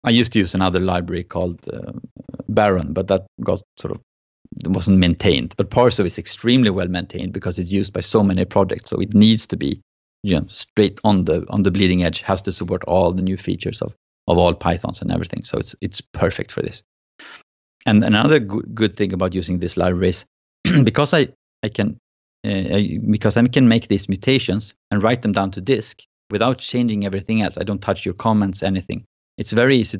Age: 30-49